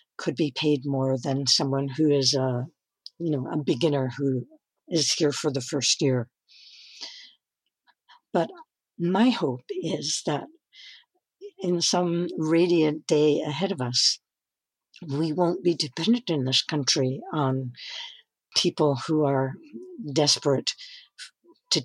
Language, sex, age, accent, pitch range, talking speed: English, female, 60-79, American, 140-170 Hz, 125 wpm